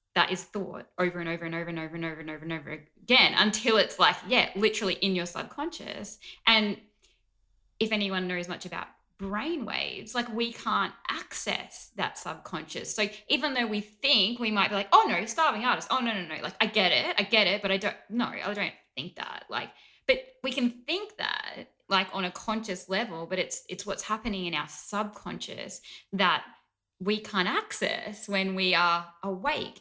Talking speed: 195 wpm